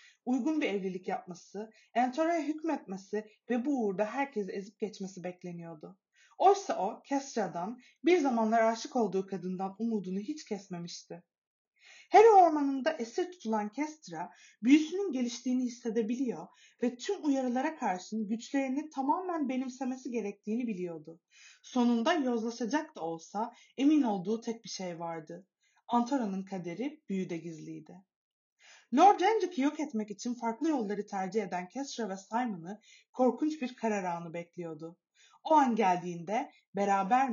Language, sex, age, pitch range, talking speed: Turkish, female, 30-49, 195-300 Hz, 120 wpm